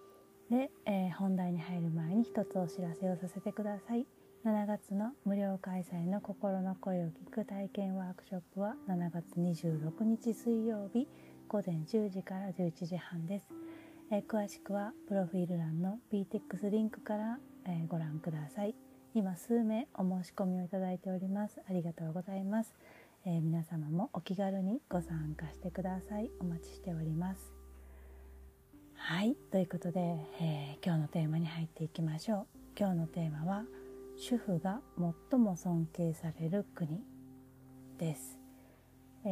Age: 30-49